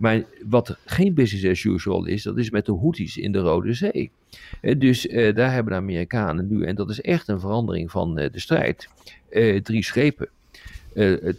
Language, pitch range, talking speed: Dutch, 90-120 Hz, 195 wpm